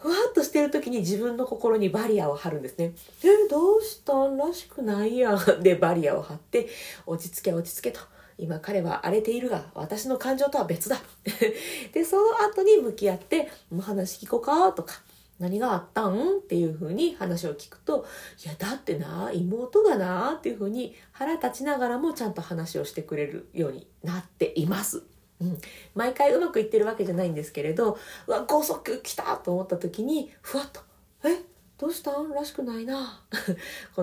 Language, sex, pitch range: Japanese, female, 180-275 Hz